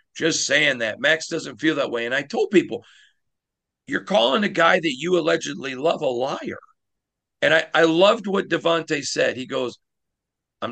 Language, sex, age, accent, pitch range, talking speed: English, male, 50-69, American, 120-170 Hz, 180 wpm